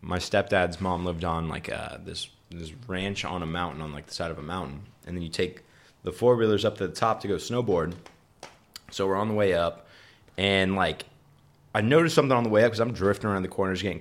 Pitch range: 90-115 Hz